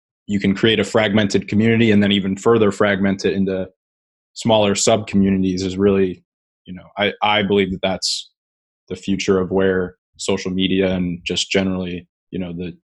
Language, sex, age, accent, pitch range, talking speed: English, male, 20-39, American, 90-100 Hz, 170 wpm